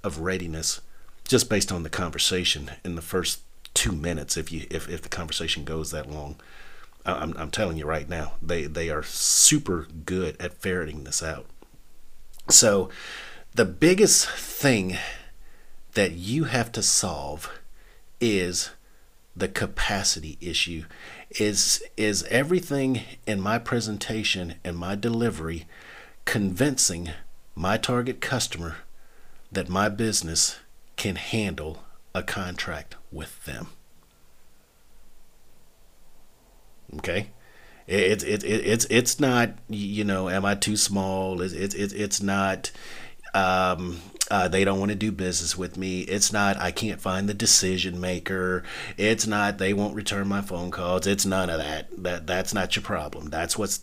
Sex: male